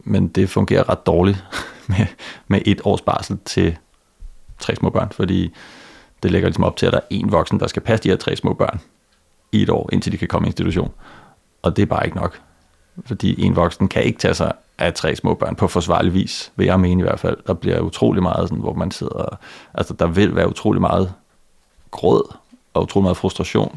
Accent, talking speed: native, 220 wpm